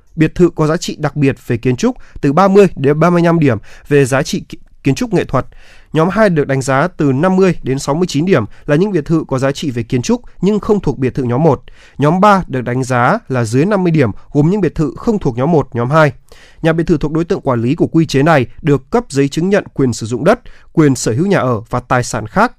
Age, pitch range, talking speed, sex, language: 20-39, 130-175 Hz, 260 wpm, male, Vietnamese